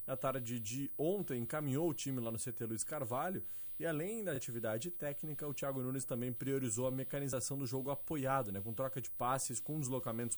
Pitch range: 115-145 Hz